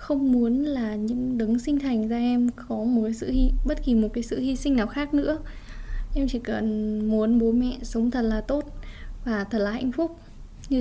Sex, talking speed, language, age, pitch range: female, 220 wpm, Vietnamese, 10-29, 230-270 Hz